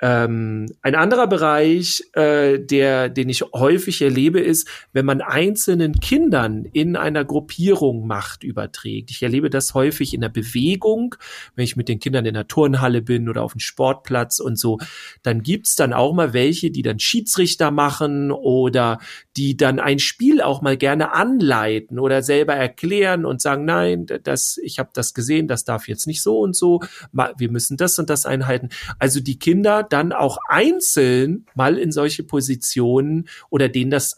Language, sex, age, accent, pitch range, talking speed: German, male, 40-59, German, 125-170 Hz, 170 wpm